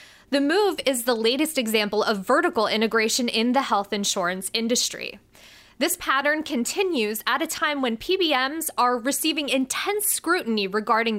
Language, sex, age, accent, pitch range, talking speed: English, female, 20-39, American, 220-305 Hz, 145 wpm